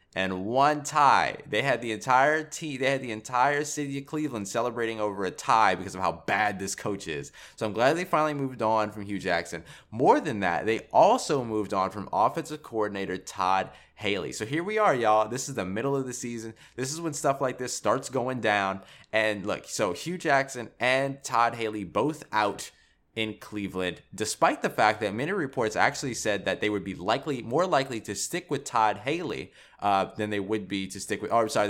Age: 20-39